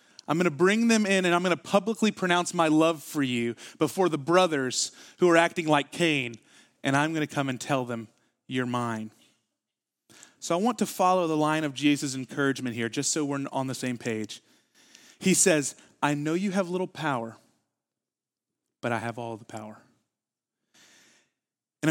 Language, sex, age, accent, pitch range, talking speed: English, male, 30-49, American, 125-180 Hz, 185 wpm